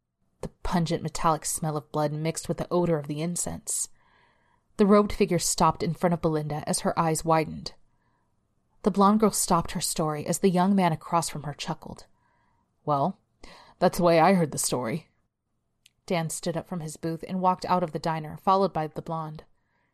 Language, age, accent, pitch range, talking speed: English, 30-49, American, 155-185 Hz, 190 wpm